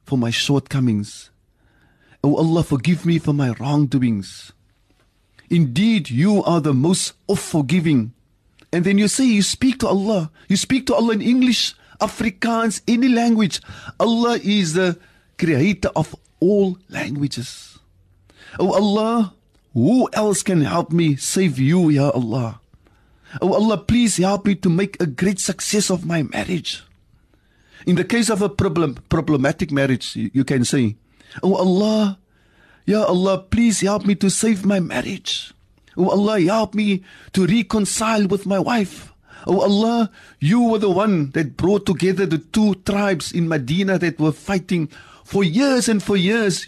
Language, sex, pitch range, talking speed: English, male, 140-205 Hz, 150 wpm